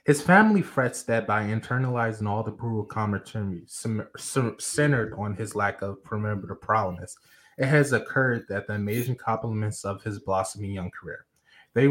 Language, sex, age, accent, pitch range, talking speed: English, male, 20-39, American, 105-140 Hz, 150 wpm